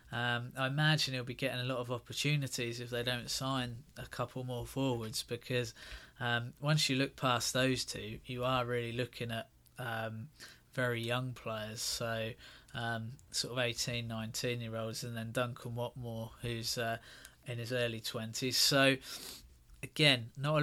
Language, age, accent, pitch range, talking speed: English, 20-39, British, 115-130 Hz, 160 wpm